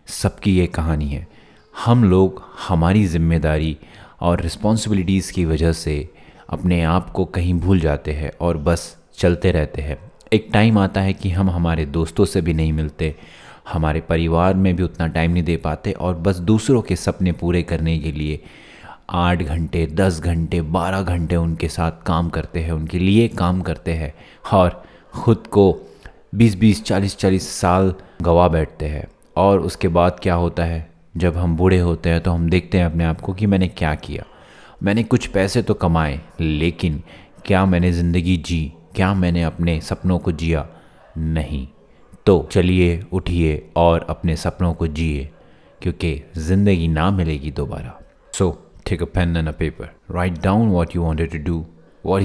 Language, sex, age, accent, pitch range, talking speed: Hindi, male, 30-49, native, 80-95 Hz, 170 wpm